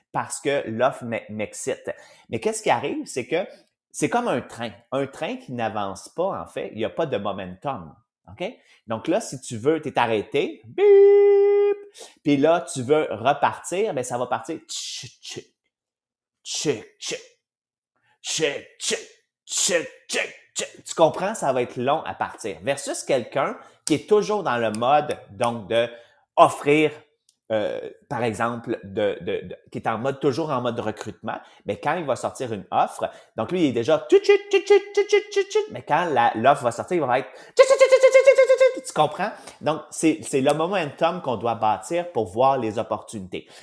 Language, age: English, 30-49